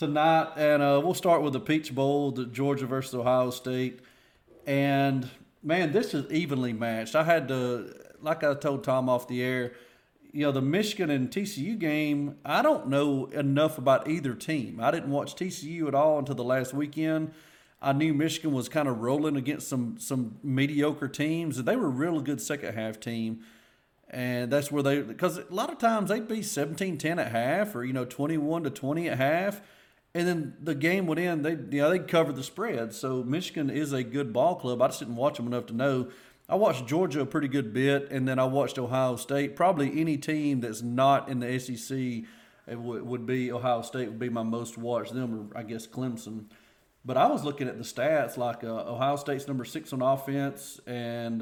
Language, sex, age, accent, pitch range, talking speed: English, male, 40-59, American, 125-150 Hz, 205 wpm